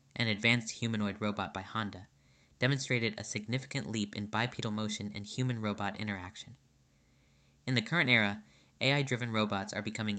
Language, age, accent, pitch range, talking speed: English, 10-29, American, 105-125 Hz, 140 wpm